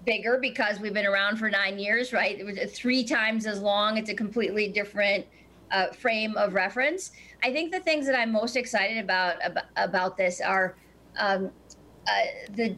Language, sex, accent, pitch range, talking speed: English, female, American, 195-230 Hz, 180 wpm